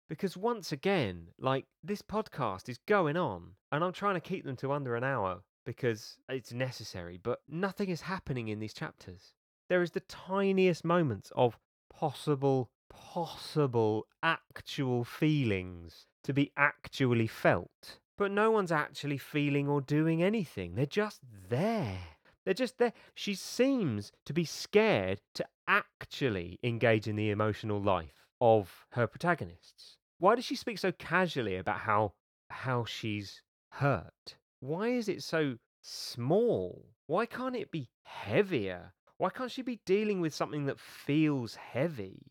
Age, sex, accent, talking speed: 30-49, male, British, 145 wpm